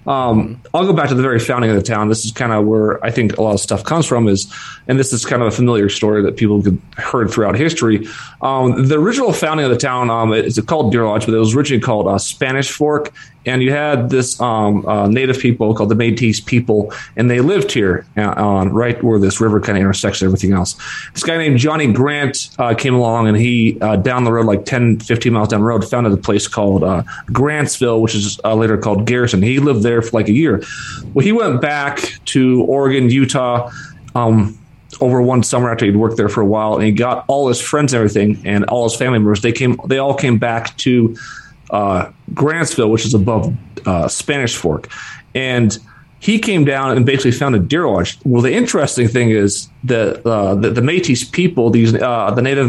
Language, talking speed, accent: English, 225 wpm, American